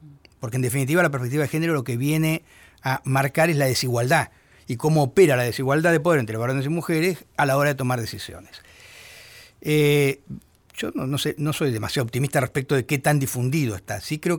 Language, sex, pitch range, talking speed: Spanish, male, 125-160 Hz, 205 wpm